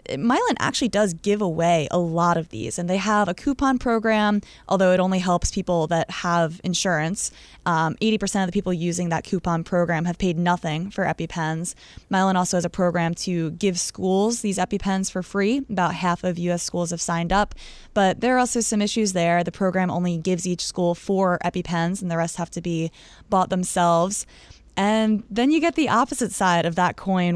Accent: American